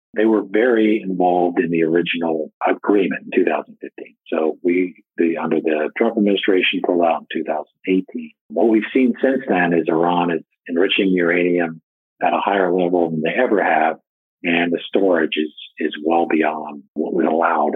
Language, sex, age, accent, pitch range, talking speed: English, male, 50-69, American, 85-110 Hz, 165 wpm